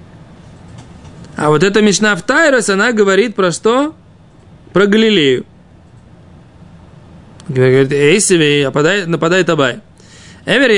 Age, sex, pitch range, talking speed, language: 20-39, male, 150-205 Hz, 110 wpm, Russian